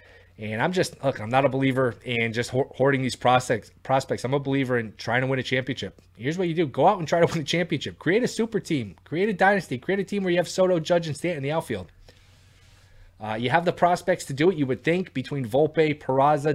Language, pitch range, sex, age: English, 110-155 Hz, male, 20-39